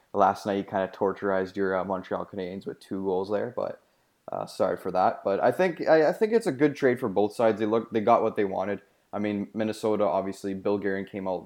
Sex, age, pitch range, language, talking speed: male, 20-39, 95-105 Hz, English, 245 wpm